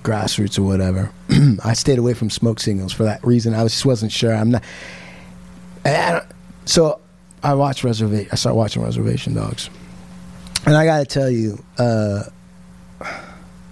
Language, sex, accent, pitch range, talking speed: English, male, American, 105-155 Hz, 155 wpm